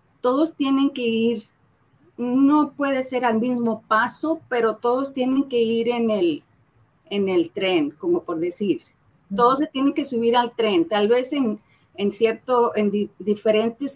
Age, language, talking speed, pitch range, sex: 40-59, Spanish, 150 wpm, 190-240 Hz, female